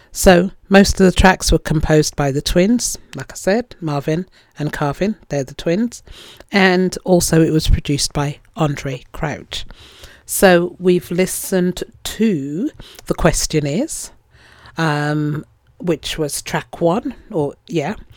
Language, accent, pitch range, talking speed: English, British, 150-205 Hz, 130 wpm